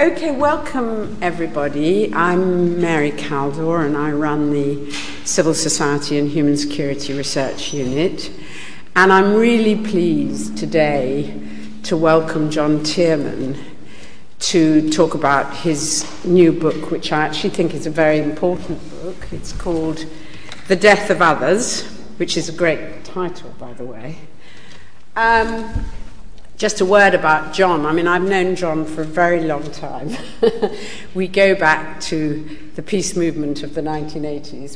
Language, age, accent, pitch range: English, 60-79, British, 145-175 Hz